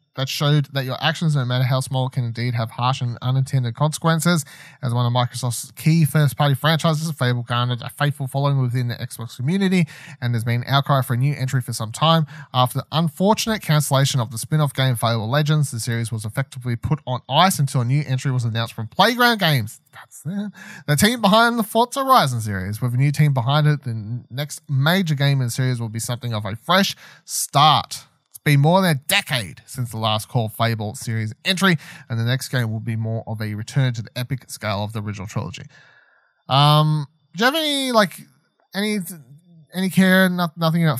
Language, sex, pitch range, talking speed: English, male, 125-160 Hz, 205 wpm